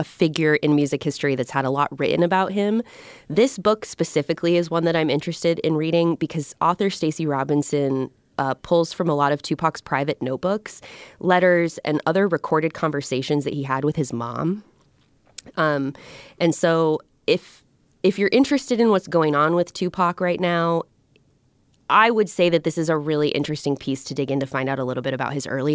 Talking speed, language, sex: 195 wpm, English, female